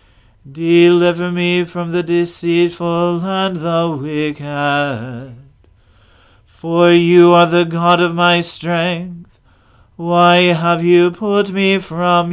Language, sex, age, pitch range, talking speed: English, male, 40-59, 150-180 Hz, 105 wpm